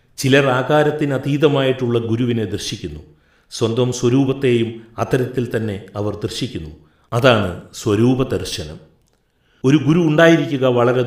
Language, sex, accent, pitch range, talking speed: Malayalam, male, native, 100-135 Hz, 90 wpm